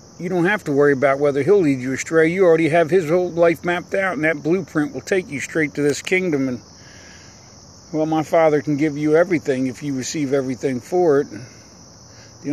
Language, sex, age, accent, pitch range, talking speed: English, male, 50-69, American, 135-170 Hz, 215 wpm